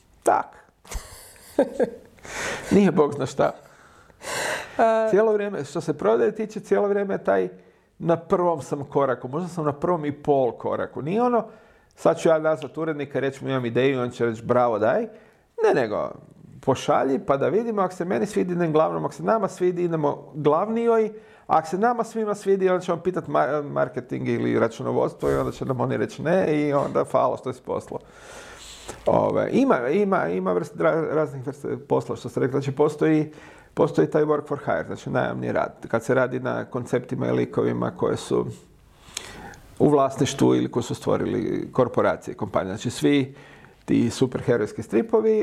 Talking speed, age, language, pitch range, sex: 170 wpm, 40-59, English, 125-200 Hz, male